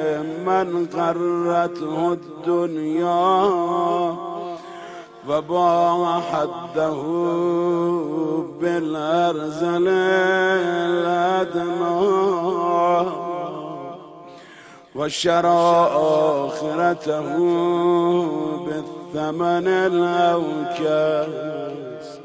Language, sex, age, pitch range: Persian, male, 50-69, 170-175 Hz